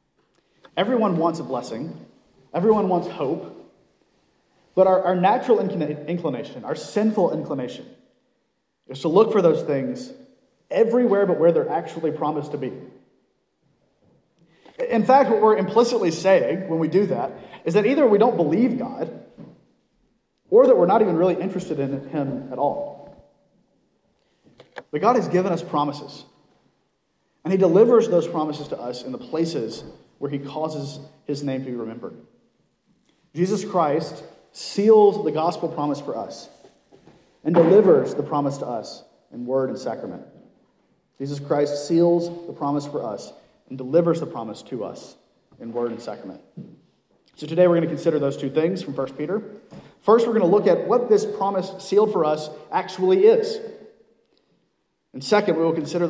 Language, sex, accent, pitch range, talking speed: English, male, American, 145-210 Hz, 155 wpm